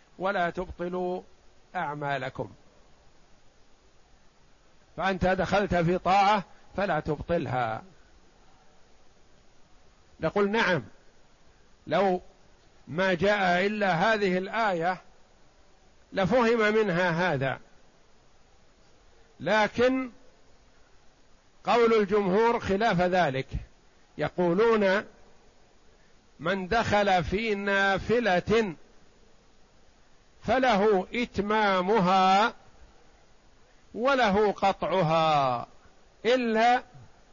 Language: Arabic